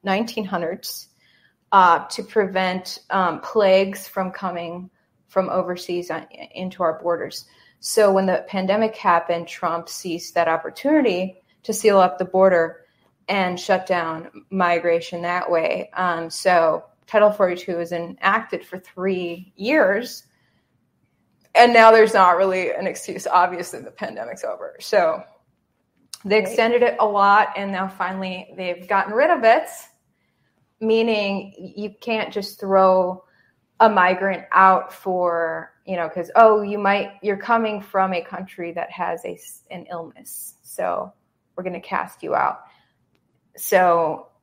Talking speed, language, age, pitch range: 135 wpm, English, 20-39, 175-205 Hz